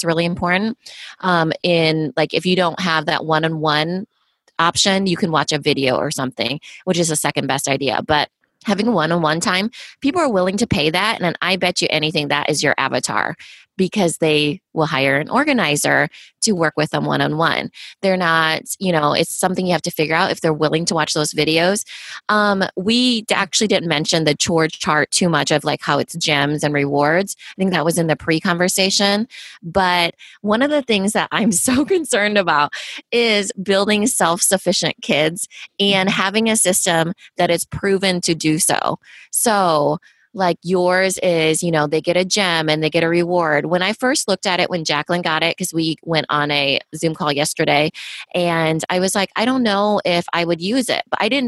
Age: 20-39